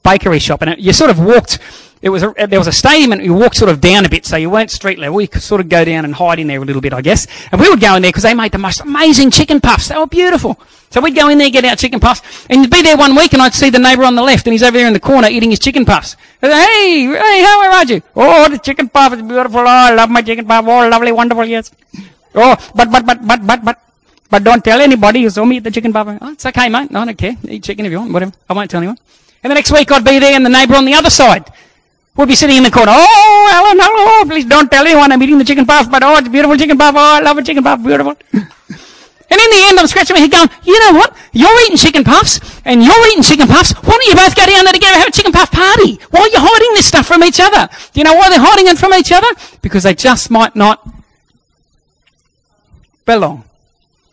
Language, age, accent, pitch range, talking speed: English, 30-49, Australian, 205-305 Hz, 285 wpm